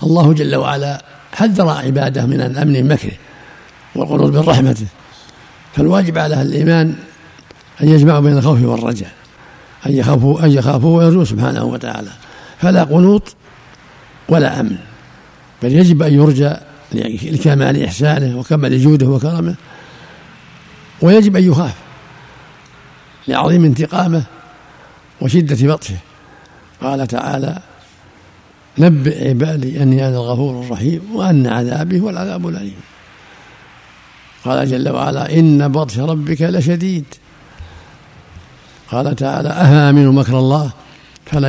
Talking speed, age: 100 wpm, 60-79